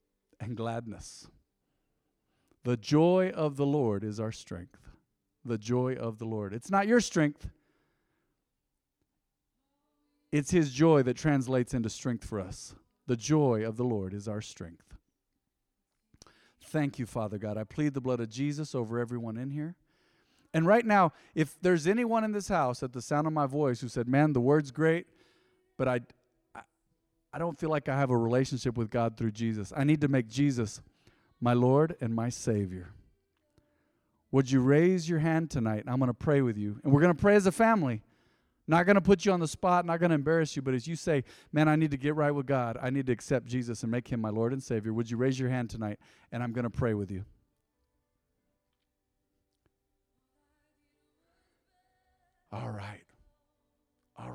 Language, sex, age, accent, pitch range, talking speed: English, male, 40-59, American, 115-155 Hz, 185 wpm